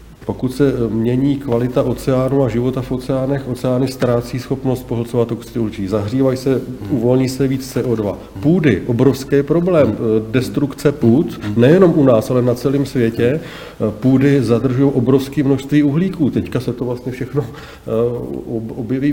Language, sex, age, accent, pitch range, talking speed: Czech, male, 40-59, native, 120-140 Hz, 135 wpm